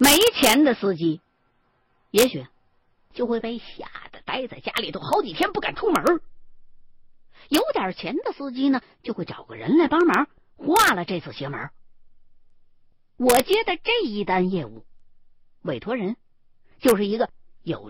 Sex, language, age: female, Chinese, 50-69